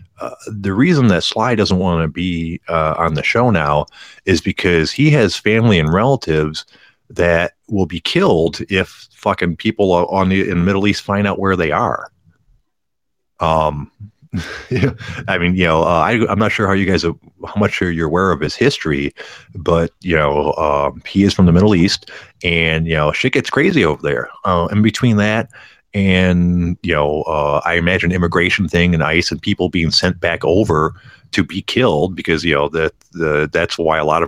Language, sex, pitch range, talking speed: English, male, 80-105 Hz, 195 wpm